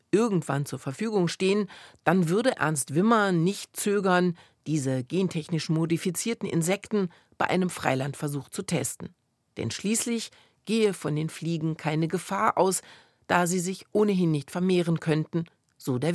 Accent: German